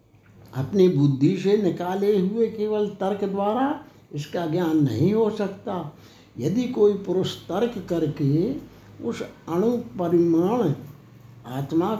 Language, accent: Hindi, native